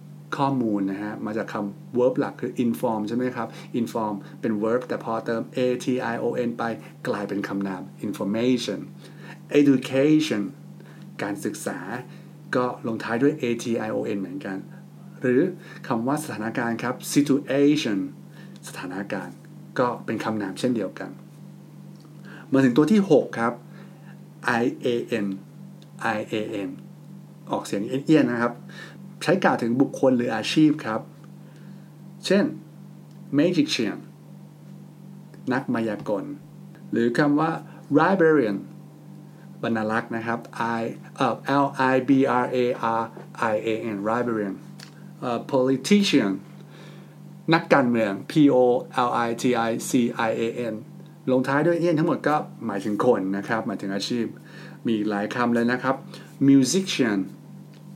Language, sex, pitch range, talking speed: English, male, 115-170 Hz, 50 wpm